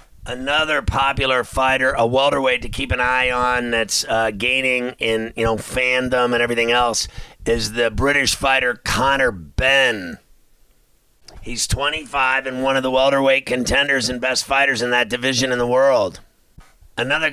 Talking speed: 150 wpm